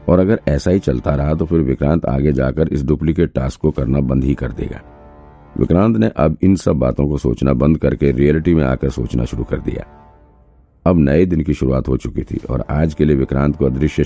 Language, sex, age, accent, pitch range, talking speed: Hindi, male, 50-69, native, 65-80 Hz, 220 wpm